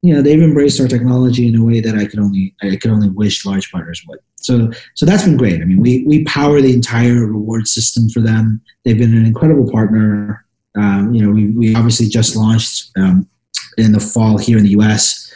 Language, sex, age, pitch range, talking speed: English, male, 30-49, 105-125 Hz, 225 wpm